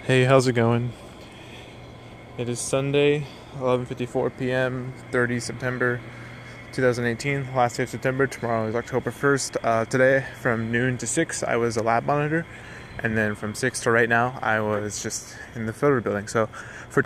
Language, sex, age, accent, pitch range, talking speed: English, male, 20-39, American, 110-125 Hz, 165 wpm